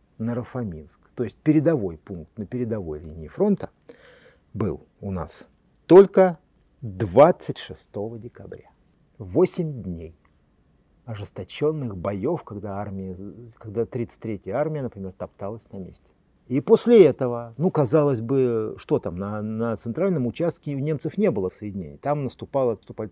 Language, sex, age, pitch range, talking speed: Russian, male, 50-69, 95-125 Hz, 120 wpm